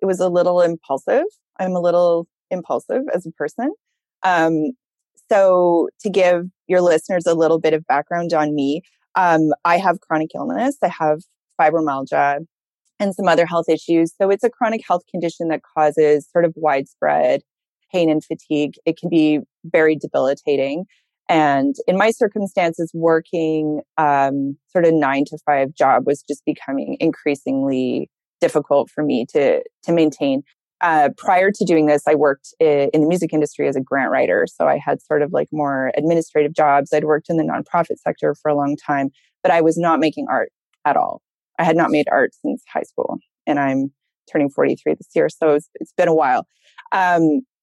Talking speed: 180 wpm